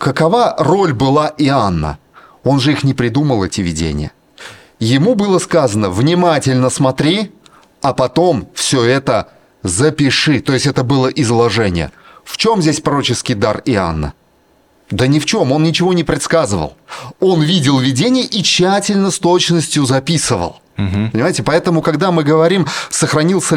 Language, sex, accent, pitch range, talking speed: Russian, male, native, 125-165 Hz, 140 wpm